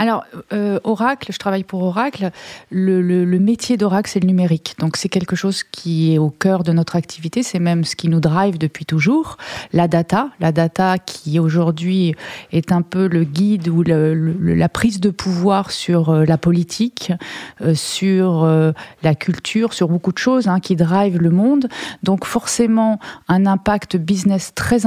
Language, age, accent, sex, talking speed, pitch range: French, 30-49, French, female, 170 wpm, 170-215 Hz